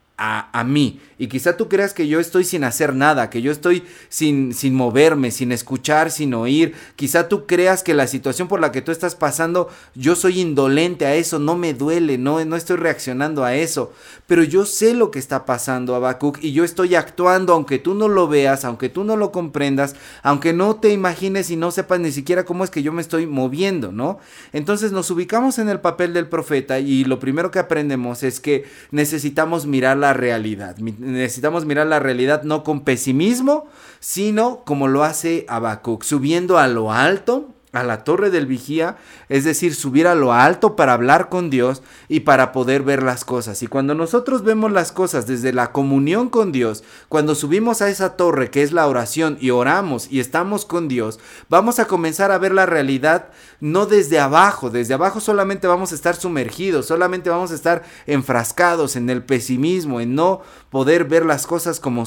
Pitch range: 135-180 Hz